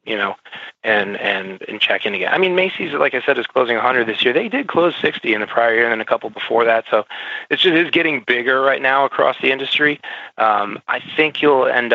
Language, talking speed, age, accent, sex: English, 245 wpm, 20-39, American, male